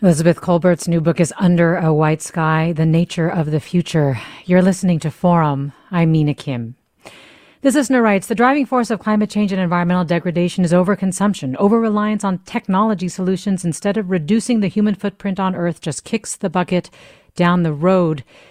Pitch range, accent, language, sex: 170-225 Hz, American, English, female